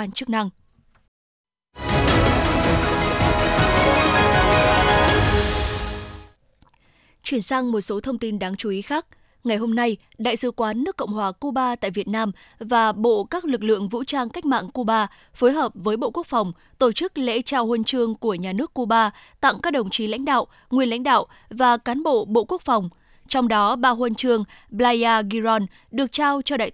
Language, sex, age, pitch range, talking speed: Vietnamese, female, 20-39, 215-260 Hz, 175 wpm